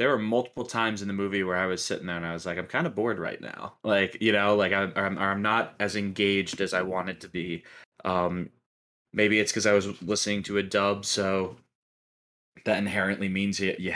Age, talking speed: 20-39, 225 wpm